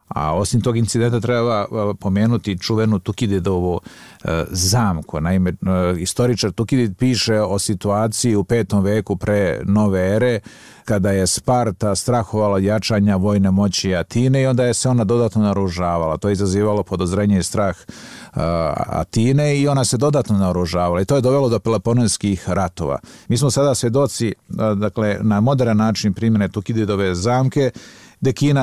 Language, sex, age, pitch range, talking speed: Croatian, male, 50-69, 100-120 Hz, 140 wpm